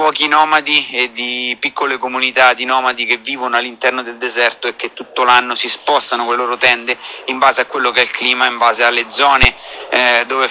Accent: native